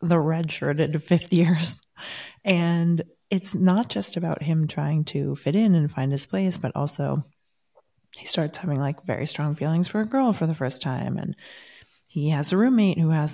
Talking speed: 185 wpm